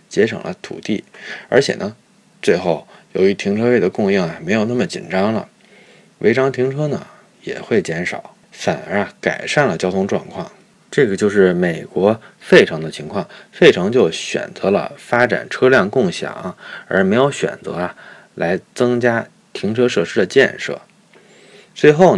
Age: 20-39